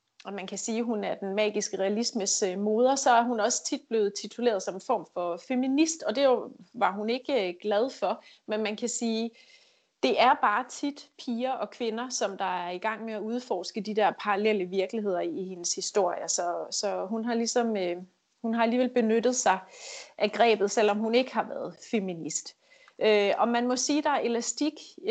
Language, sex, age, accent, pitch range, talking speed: Danish, female, 30-49, native, 200-245 Hz, 195 wpm